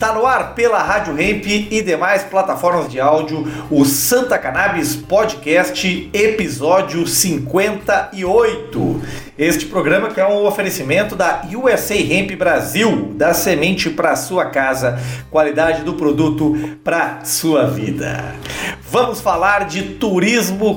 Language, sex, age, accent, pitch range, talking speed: Portuguese, male, 40-59, Brazilian, 150-205 Hz, 120 wpm